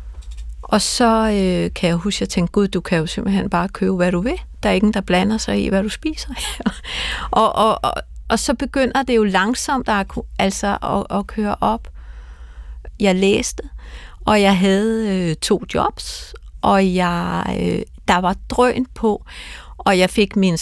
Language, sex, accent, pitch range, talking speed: Danish, female, native, 180-230 Hz, 185 wpm